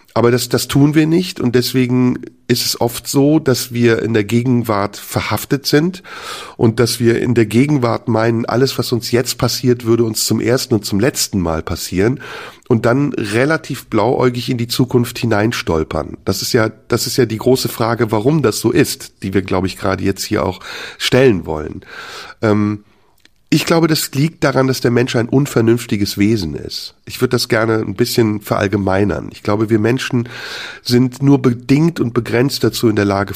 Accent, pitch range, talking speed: German, 105-125 Hz, 185 wpm